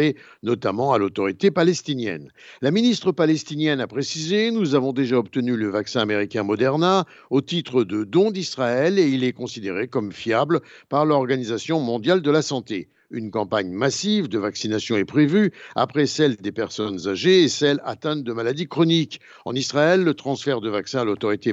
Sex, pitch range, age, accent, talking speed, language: male, 115-155 Hz, 60-79, French, 165 wpm, Italian